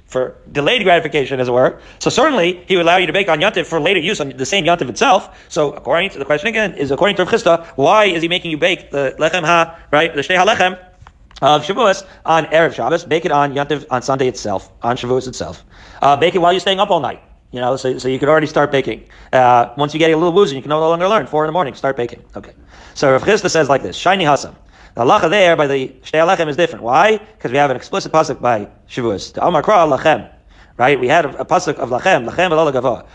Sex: male